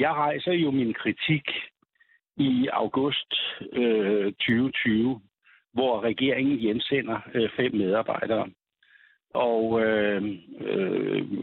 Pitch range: 110-150 Hz